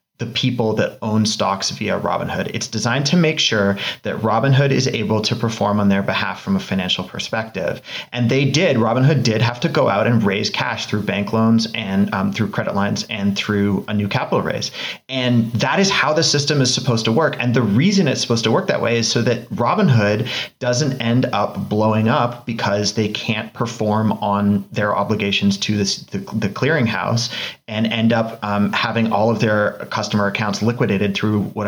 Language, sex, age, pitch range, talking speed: English, male, 30-49, 105-135 Hz, 195 wpm